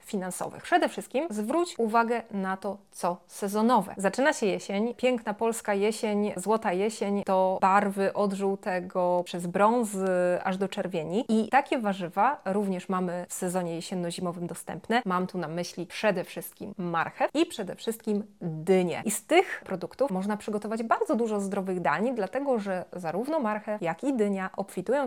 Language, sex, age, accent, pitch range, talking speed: Polish, female, 20-39, native, 180-220 Hz, 155 wpm